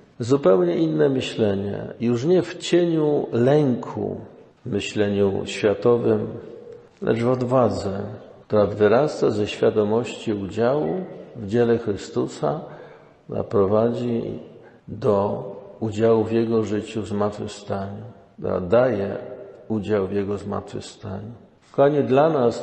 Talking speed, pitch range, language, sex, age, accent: 105 wpm, 105-130 Hz, Polish, male, 50-69, native